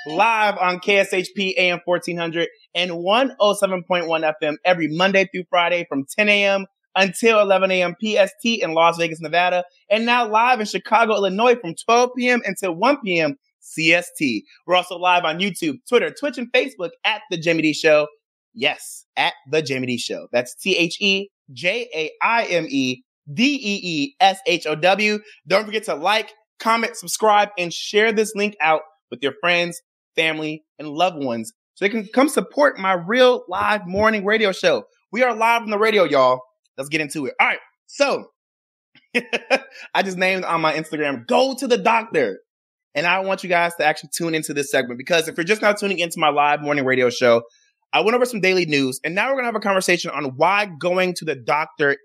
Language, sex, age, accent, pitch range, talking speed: English, male, 30-49, American, 160-220 Hz, 175 wpm